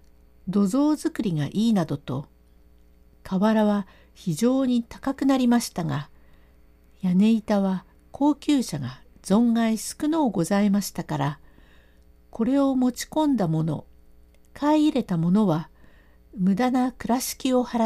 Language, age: Japanese, 60-79